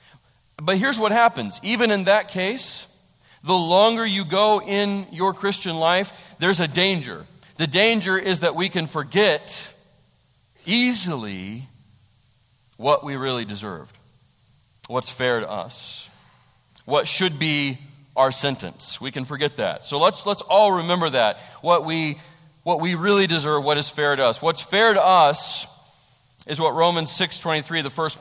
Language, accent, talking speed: English, American, 150 wpm